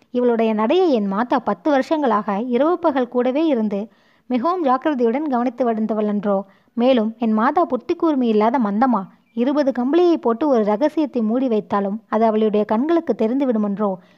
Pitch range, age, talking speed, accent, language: 215-270 Hz, 20-39, 130 wpm, native, Tamil